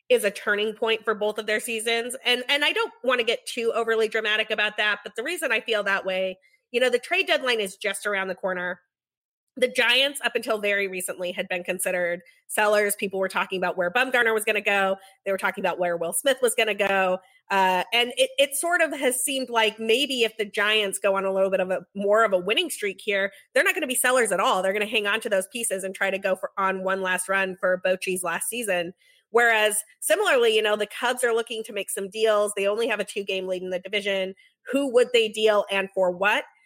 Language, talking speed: English, 250 wpm